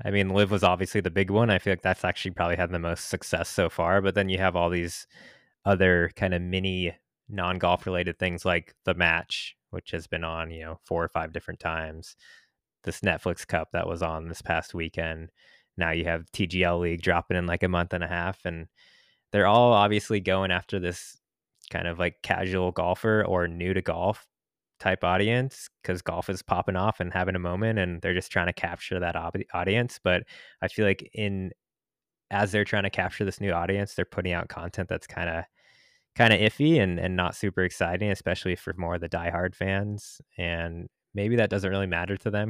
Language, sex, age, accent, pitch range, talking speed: English, male, 20-39, American, 85-100 Hz, 210 wpm